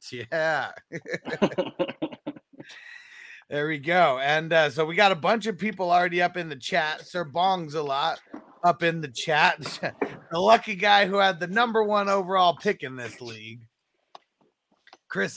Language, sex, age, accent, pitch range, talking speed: English, male, 30-49, American, 160-210 Hz, 155 wpm